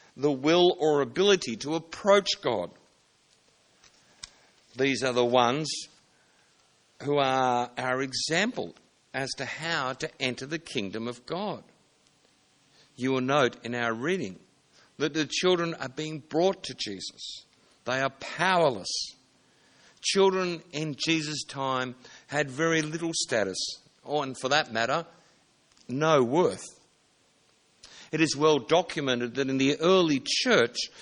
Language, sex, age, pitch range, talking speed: English, male, 60-79, 130-165 Hz, 125 wpm